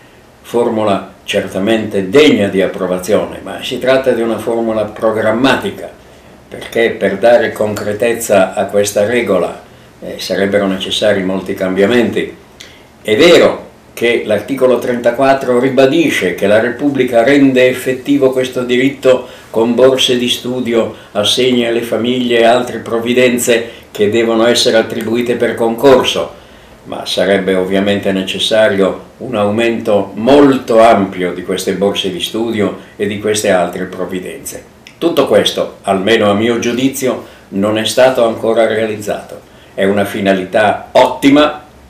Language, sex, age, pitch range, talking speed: Italian, male, 60-79, 100-120 Hz, 125 wpm